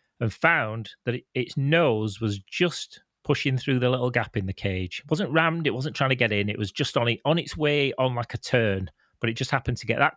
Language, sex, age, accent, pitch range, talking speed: English, male, 30-49, British, 110-145 Hz, 240 wpm